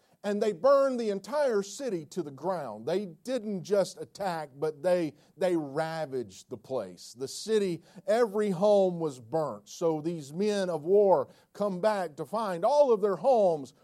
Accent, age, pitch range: American, 40-59, 170-230 Hz